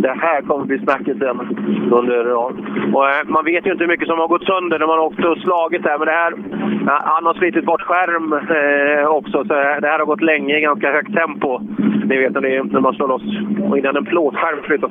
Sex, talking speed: male, 235 wpm